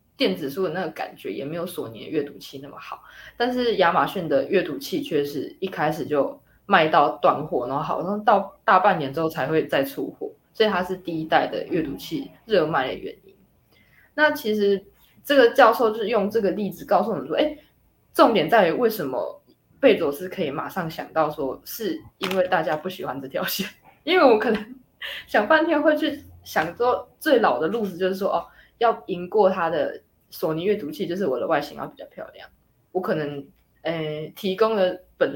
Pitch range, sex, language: 175-255 Hz, female, Chinese